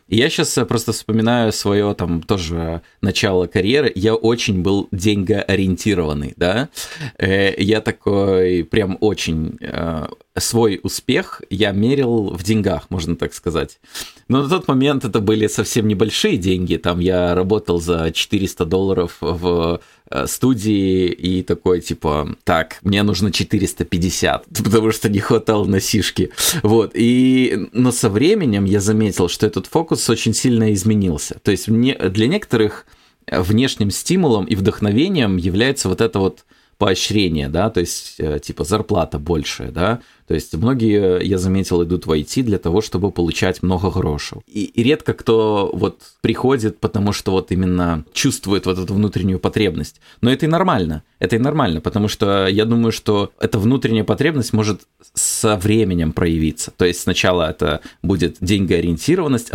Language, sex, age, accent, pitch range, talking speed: Russian, male, 20-39, native, 90-110 Hz, 145 wpm